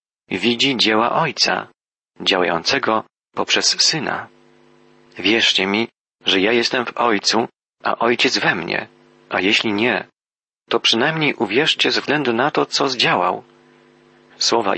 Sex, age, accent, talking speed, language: male, 40-59, native, 120 wpm, Polish